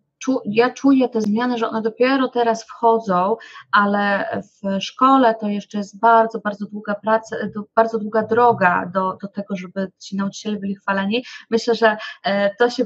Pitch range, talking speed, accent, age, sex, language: 195-230 Hz, 160 wpm, native, 20-39, female, Polish